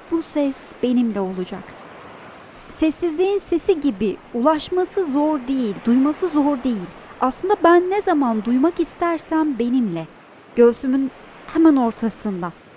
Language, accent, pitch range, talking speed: Turkish, native, 230-300 Hz, 110 wpm